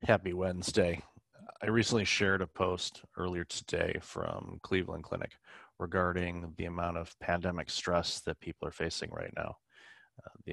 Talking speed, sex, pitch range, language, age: 150 wpm, male, 80-90 Hz, English, 30-49